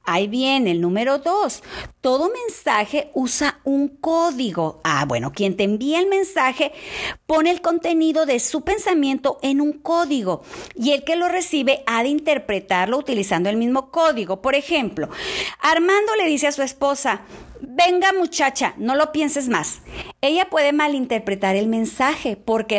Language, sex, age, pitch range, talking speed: Spanish, female, 40-59, 235-320 Hz, 155 wpm